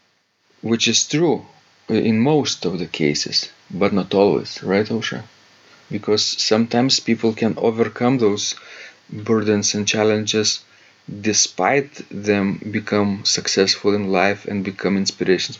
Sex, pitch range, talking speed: male, 100-120 Hz, 120 wpm